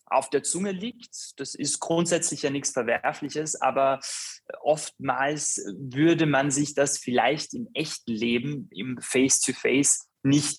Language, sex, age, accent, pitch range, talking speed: German, male, 20-39, German, 125-145 Hz, 130 wpm